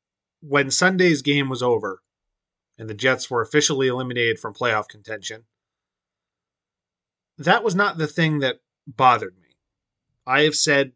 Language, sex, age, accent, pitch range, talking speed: English, male, 30-49, American, 115-145 Hz, 135 wpm